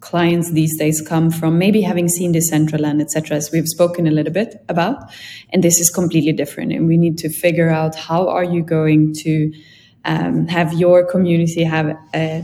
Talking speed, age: 195 wpm, 20-39